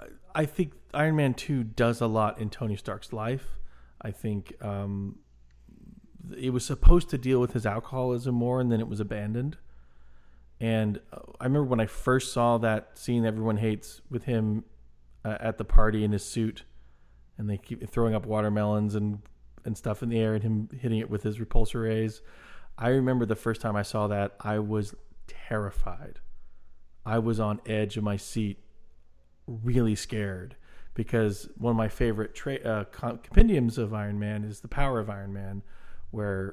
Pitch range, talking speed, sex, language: 100-115 Hz, 175 wpm, male, English